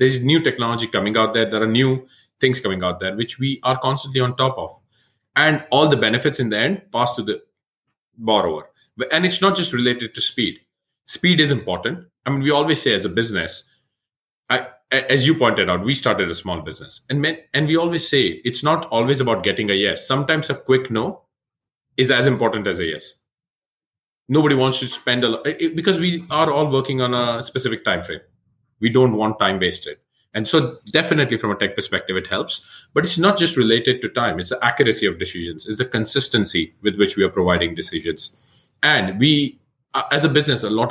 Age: 30-49